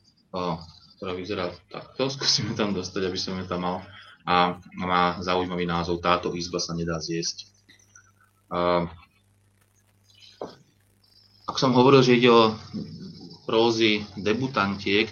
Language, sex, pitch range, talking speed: Slovak, male, 90-100 Hz, 110 wpm